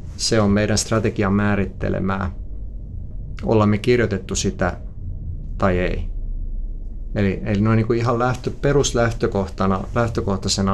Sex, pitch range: male, 95-110 Hz